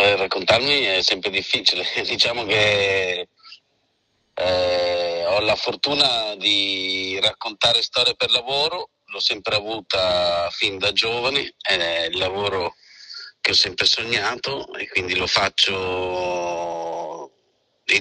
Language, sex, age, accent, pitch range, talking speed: Italian, male, 30-49, native, 90-115 Hz, 110 wpm